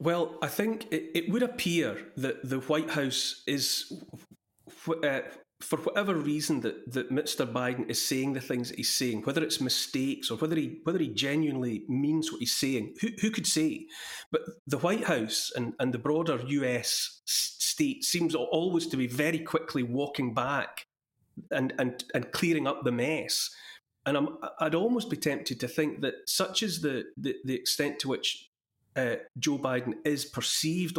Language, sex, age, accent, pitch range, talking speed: English, male, 30-49, British, 125-170 Hz, 180 wpm